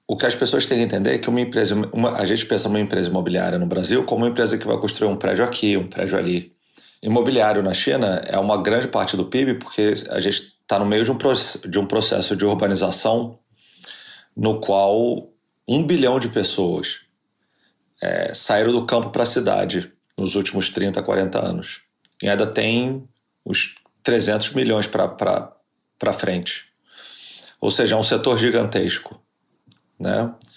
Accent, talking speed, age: Brazilian, 175 wpm, 40-59